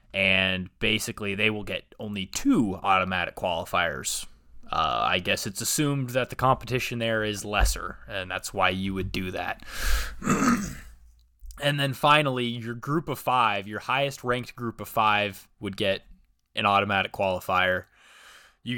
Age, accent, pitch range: 20-39, American, 95-125 Hz